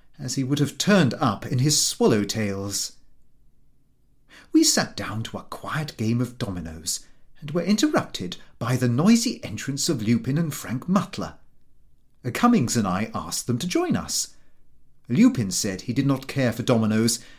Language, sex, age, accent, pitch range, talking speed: English, male, 40-59, British, 120-195 Hz, 160 wpm